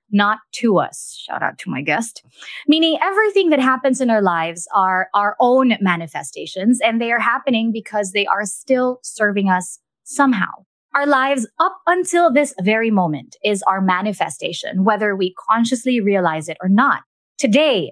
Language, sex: English, female